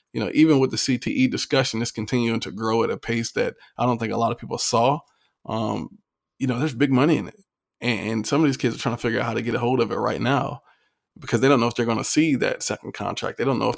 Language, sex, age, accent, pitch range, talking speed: English, male, 20-39, American, 110-130 Hz, 290 wpm